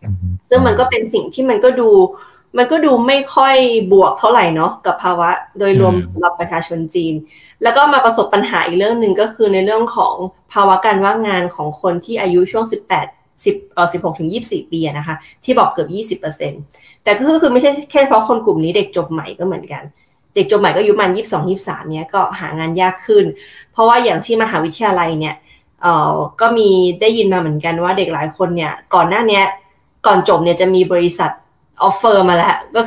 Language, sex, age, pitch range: Thai, female, 20-39, 170-225 Hz